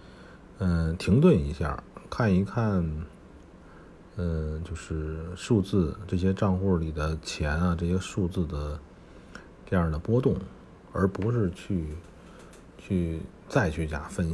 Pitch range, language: 80-105 Hz, Chinese